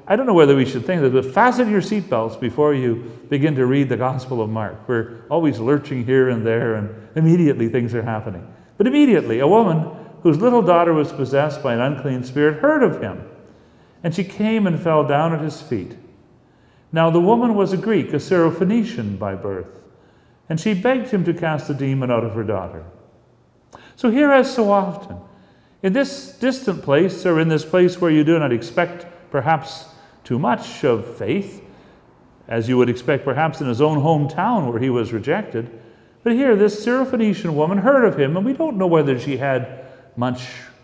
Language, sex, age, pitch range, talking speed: English, male, 40-59, 125-190 Hz, 195 wpm